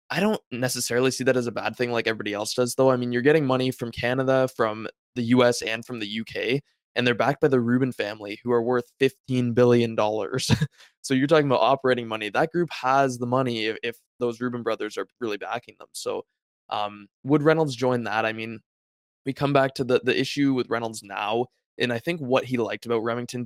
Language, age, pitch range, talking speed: English, 20-39, 110-130 Hz, 220 wpm